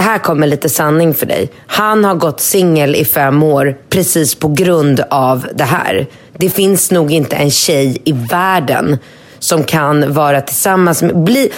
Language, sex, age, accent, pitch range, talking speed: Swedish, female, 30-49, native, 145-180 Hz, 175 wpm